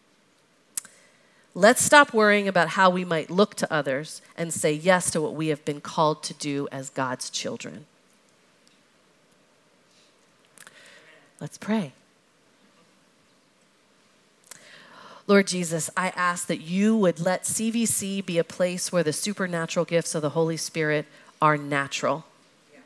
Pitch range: 160-195 Hz